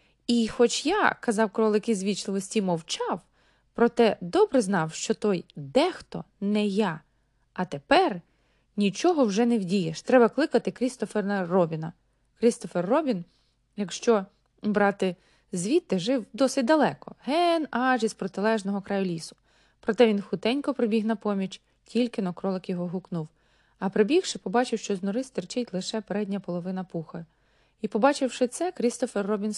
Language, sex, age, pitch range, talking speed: Ukrainian, female, 20-39, 195-255 Hz, 135 wpm